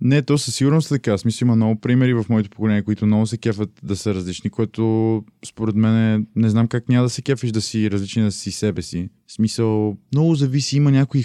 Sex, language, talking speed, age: male, Bulgarian, 225 wpm, 20-39